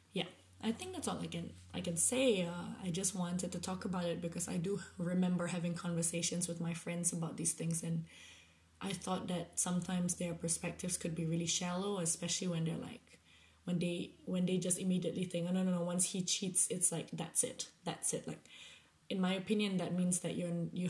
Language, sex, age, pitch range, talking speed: English, female, 20-39, 165-180 Hz, 210 wpm